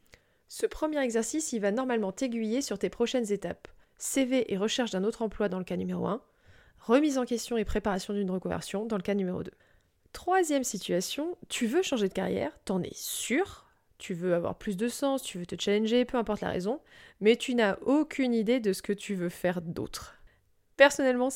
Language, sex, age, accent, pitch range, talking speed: French, female, 20-39, French, 200-260 Hz, 200 wpm